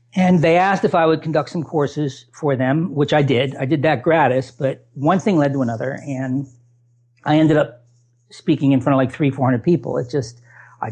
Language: English